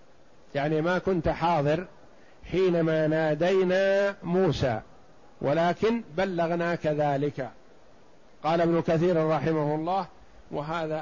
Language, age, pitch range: Arabic, 50-69, 150-170 Hz